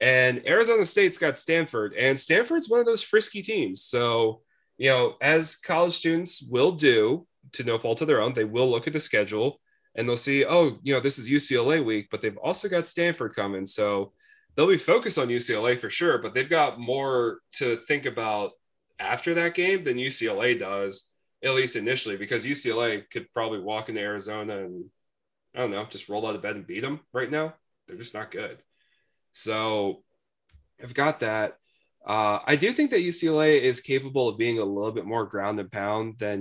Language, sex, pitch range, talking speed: English, male, 110-170 Hz, 195 wpm